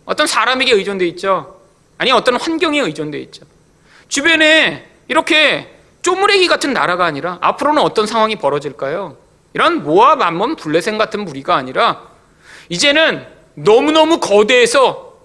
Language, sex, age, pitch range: Korean, male, 40-59, 170-285 Hz